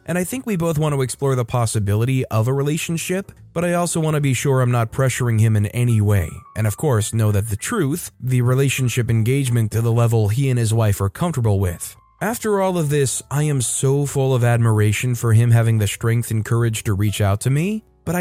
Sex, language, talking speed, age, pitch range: male, English, 230 wpm, 20-39, 115-150 Hz